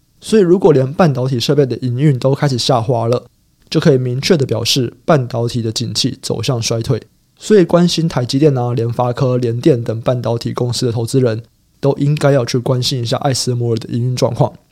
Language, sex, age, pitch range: Chinese, male, 20-39, 120-150 Hz